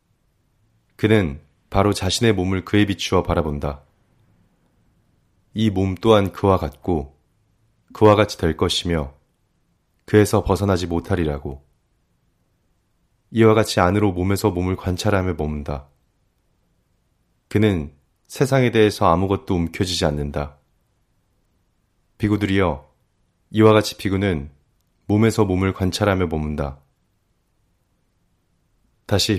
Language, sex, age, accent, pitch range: Korean, male, 30-49, native, 85-105 Hz